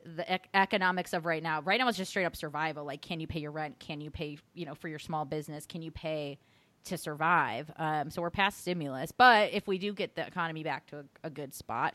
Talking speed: 255 wpm